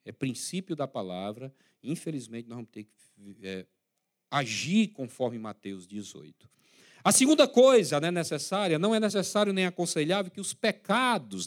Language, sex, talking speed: Portuguese, male, 140 wpm